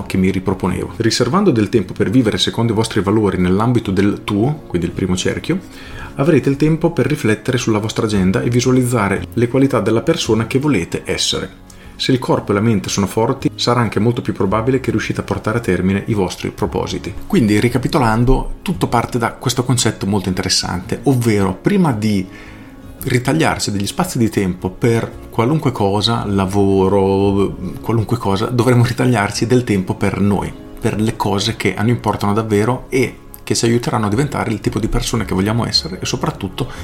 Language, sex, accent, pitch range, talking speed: Italian, male, native, 100-125 Hz, 180 wpm